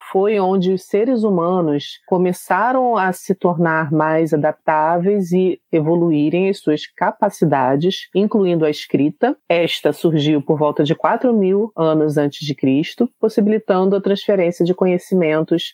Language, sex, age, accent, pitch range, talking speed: Portuguese, female, 30-49, Brazilian, 160-215 Hz, 135 wpm